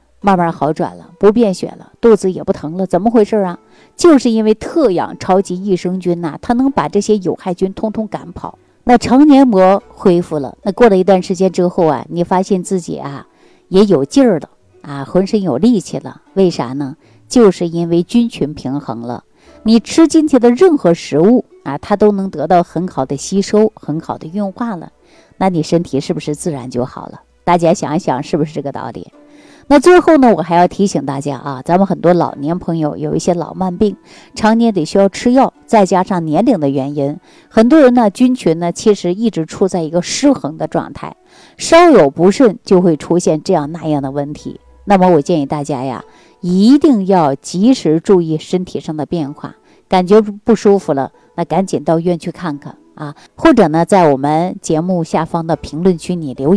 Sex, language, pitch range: female, Chinese, 155-210 Hz